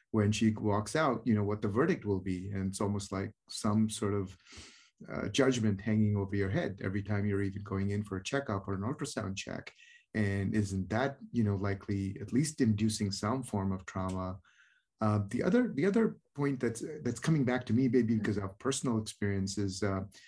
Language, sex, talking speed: English, male, 200 wpm